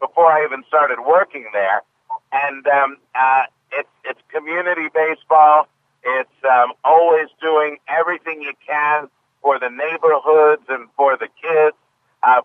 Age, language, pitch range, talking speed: 50-69, English, 130-155 Hz, 135 wpm